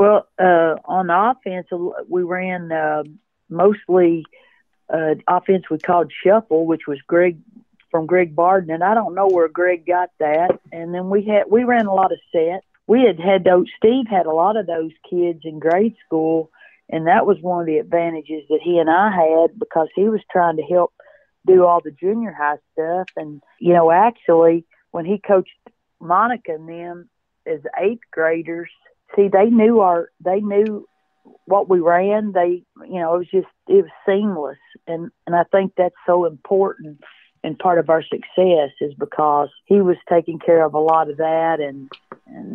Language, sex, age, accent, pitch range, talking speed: English, female, 50-69, American, 160-195 Hz, 185 wpm